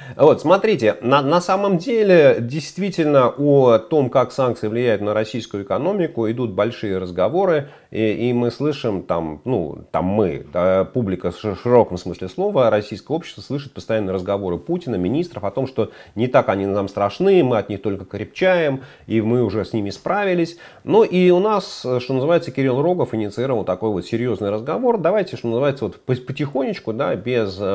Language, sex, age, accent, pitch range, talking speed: Russian, male, 30-49, native, 100-150 Hz, 170 wpm